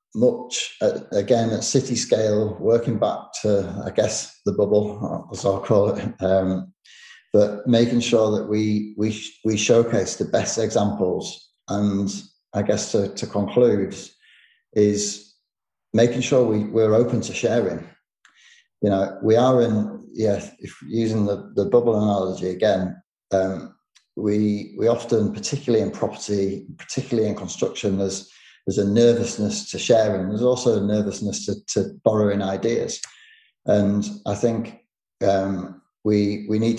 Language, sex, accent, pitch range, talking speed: English, male, British, 100-115 Hz, 140 wpm